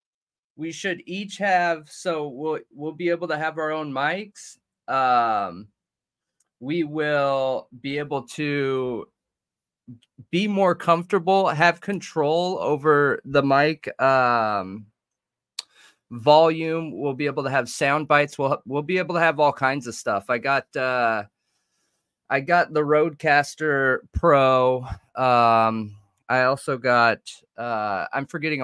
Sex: male